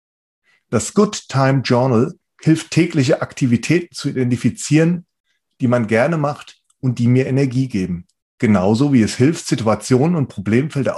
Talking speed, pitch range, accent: 135 wpm, 105-150 Hz, German